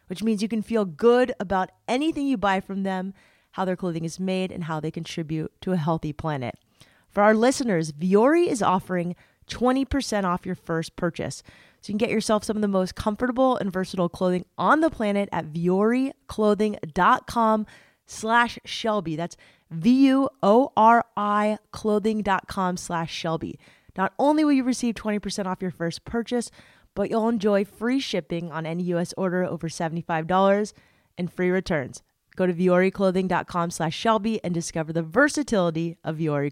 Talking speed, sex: 160 wpm, female